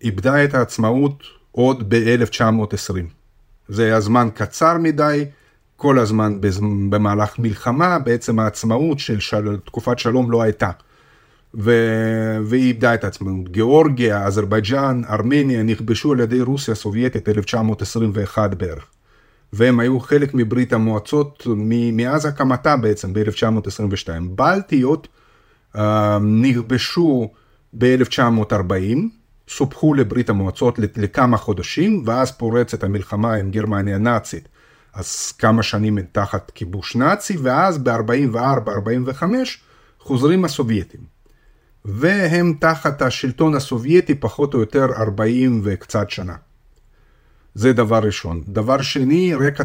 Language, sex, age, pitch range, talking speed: Hebrew, male, 30-49, 105-130 Hz, 105 wpm